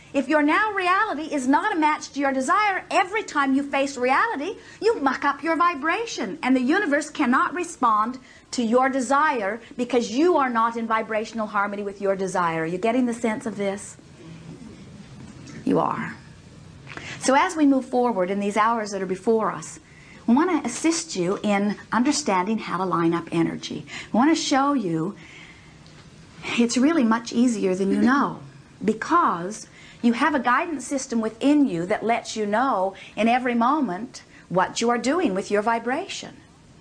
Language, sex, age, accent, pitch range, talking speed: English, female, 50-69, American, 210-290 Hz, 175 wpm